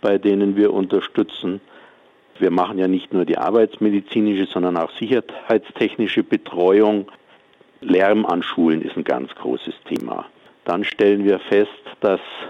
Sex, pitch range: male, 100-115 Hz